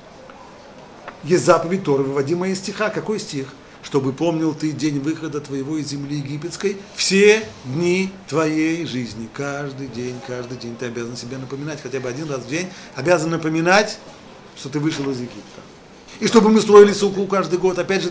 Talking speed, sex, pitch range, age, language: 160 wpm, male, 130-190 Hz, 40-59, Russian